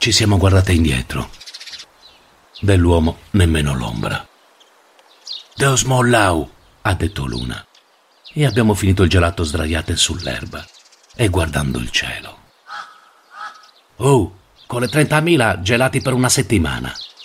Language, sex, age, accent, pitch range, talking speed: Italian, male, 50-69, native, 85-110 Hz, 110 wpm